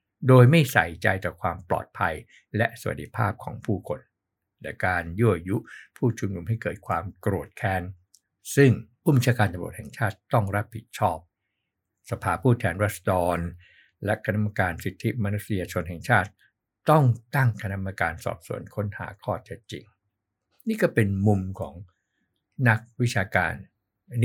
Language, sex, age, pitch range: Thai, male, 60-79, 95-115 Hz